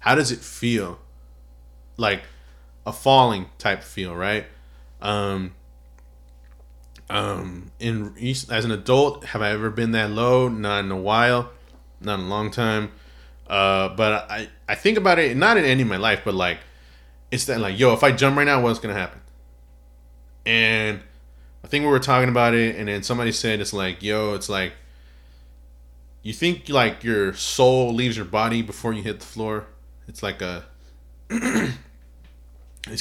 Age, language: 20-39, English